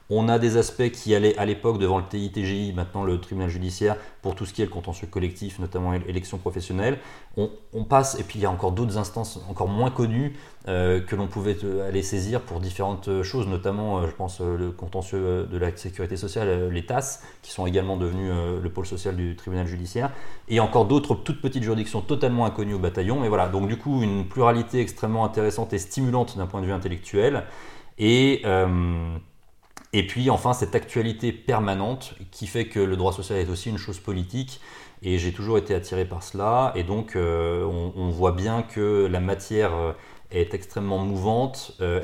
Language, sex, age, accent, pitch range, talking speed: French, male, 30-49, French, 90-115 Hz, 200 wpm